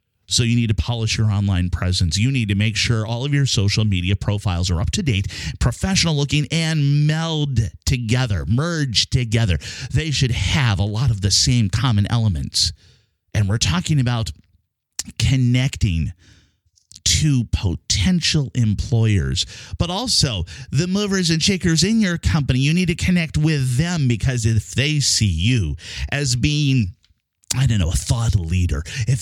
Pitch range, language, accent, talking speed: 100-140 Hz, English, American, 160 wpm